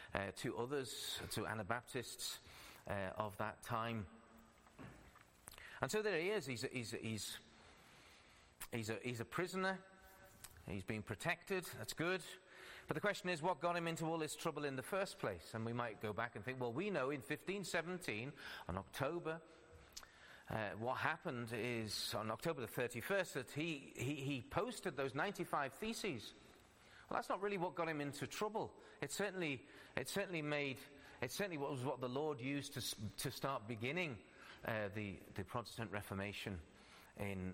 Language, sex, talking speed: English, male, 170 wpm